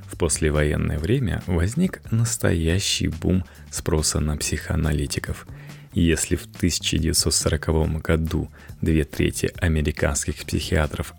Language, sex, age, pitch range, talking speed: Russian, male, 30-49, 80-110 Hz, 90 wpm